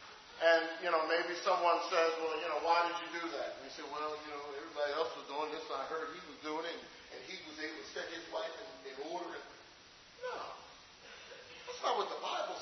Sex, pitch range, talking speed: male, 160-235 Hz, 235 wpm